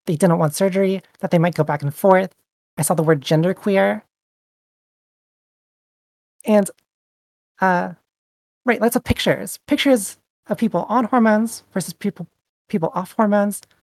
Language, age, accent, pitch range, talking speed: English, 30-49, American, 170-210 Hz, 140 wpm